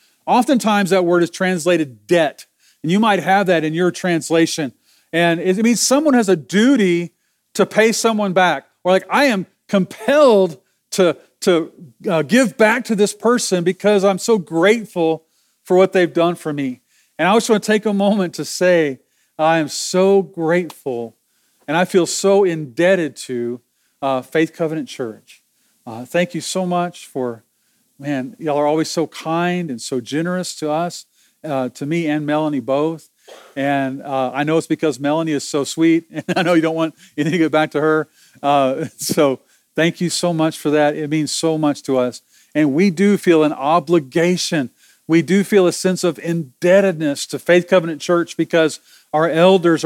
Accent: American